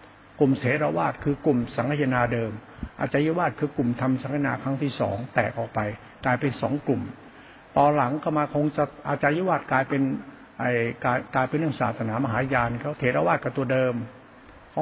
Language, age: Thai, 70-89